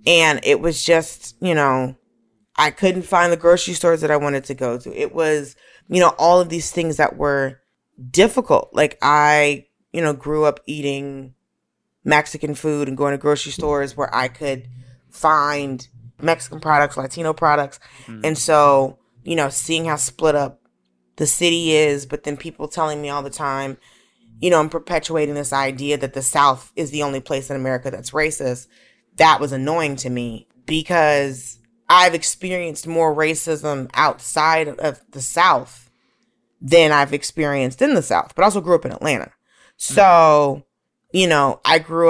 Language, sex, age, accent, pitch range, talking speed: English, female, 20-39, American, 135-160 Hz, 170 wpm